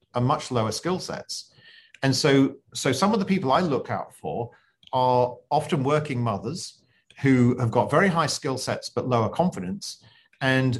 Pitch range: 115-155 Hz